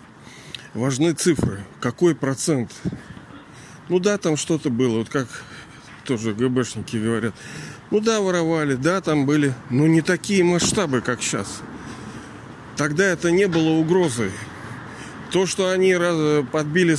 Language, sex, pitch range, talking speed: Russian, male, 115-160 Hz, 125 wpm